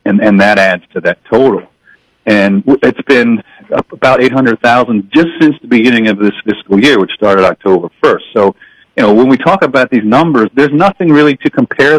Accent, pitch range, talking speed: American, 100-125 Hz, 195 wpm